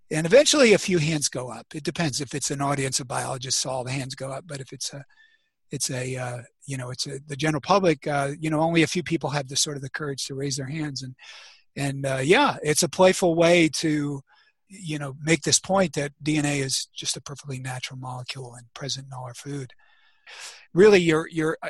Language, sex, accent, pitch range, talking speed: English, male, American, 135-165 Hz, 225 wpm